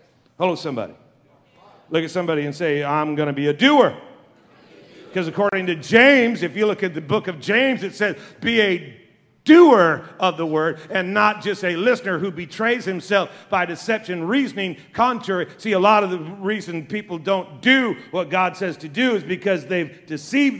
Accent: American